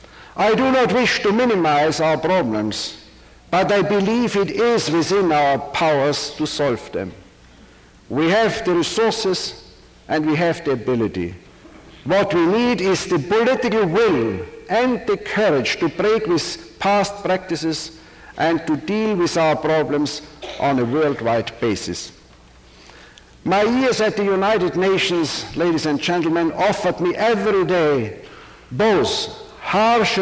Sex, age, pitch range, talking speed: male, 60-79, 150-205 Hz, 135 wpm